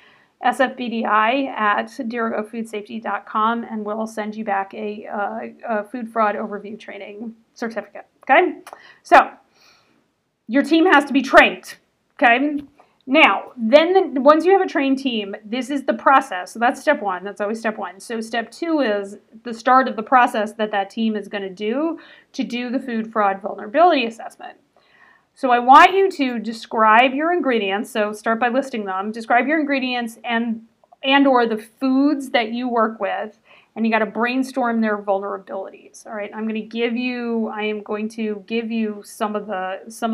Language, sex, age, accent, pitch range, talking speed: English, female, 30-49, American, 210-265 Hz, 175 wpm